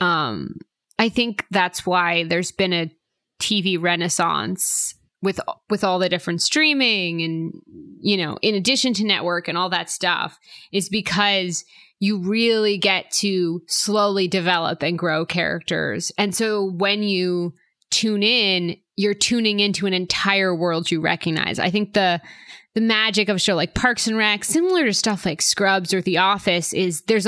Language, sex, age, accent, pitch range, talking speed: English, female, 20-39, American, 180-220 Hz, 165 wpm